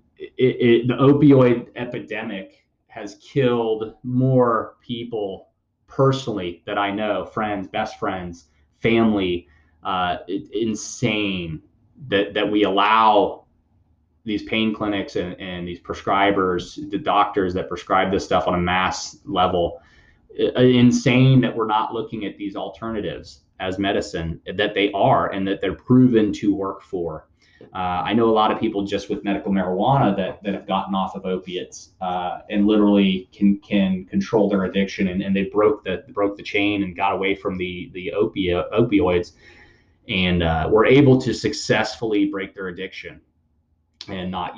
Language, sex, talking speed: English, male, 150 wpm